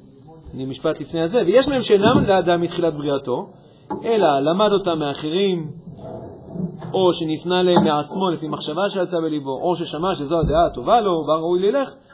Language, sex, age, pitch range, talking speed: Hebrew, male, 40-59, 145-190 Hz, 150 wpm